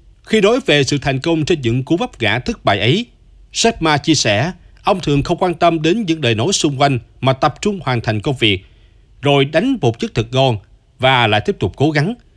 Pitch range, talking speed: 115-165 Hz, 230 wpm